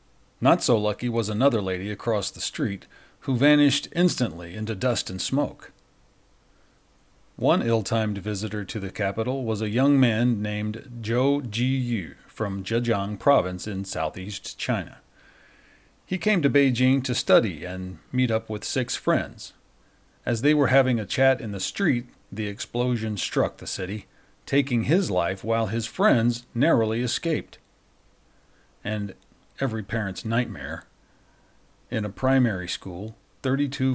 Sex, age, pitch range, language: male, 40-59, 100-130 Hz, English